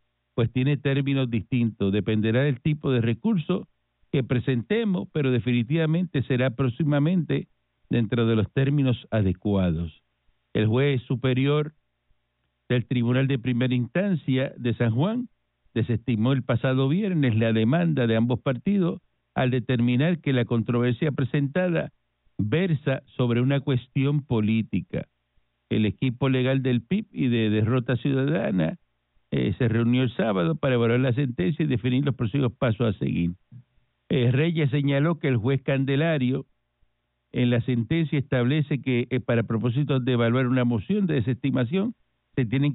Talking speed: 140 wpm